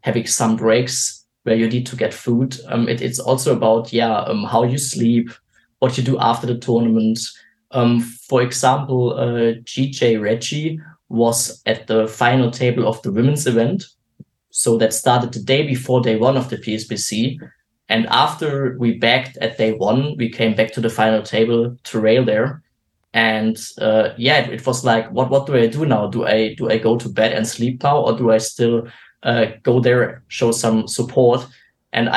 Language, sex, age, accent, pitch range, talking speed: English, male, 20-39, German, 115-130 Hz, 190 wpm